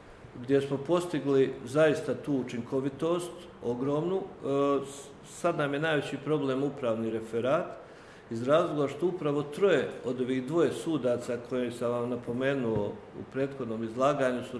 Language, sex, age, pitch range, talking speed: Croatian, male, 50-69, 125-155 Hz, 125 wpm